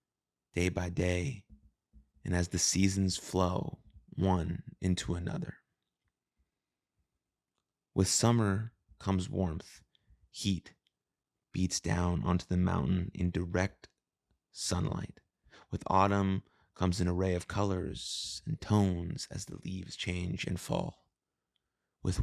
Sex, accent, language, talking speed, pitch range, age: male, American, English, 110 wpm, 90-95 Hz, 30-49